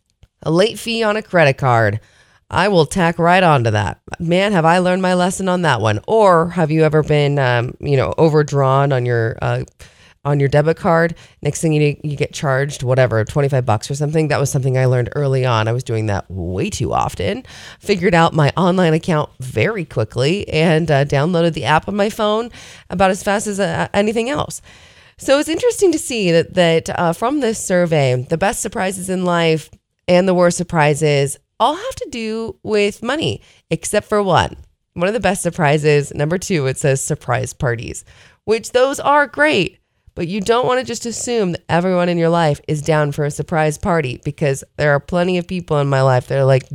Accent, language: American, English